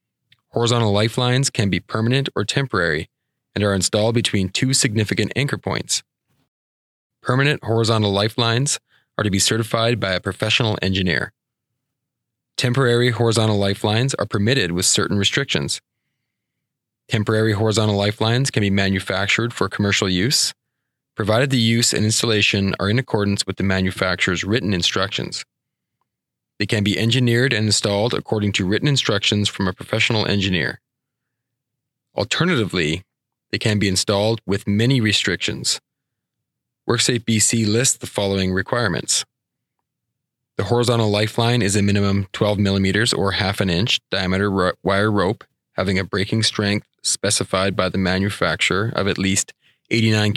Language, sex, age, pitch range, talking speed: English, male, 20-39, 100-120 Hz, 130 wpm